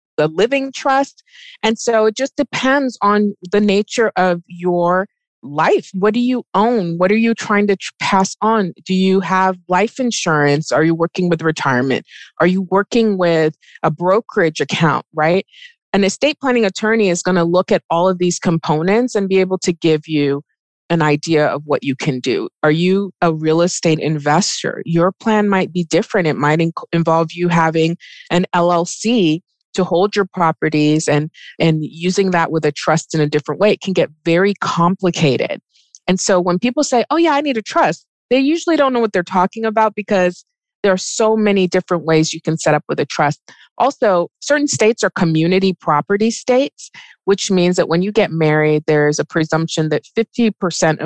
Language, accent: English, American